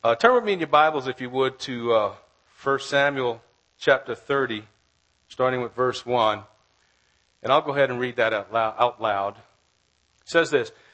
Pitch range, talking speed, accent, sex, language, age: 125-170 Hz, 175 wpm, American, male, English, 50-69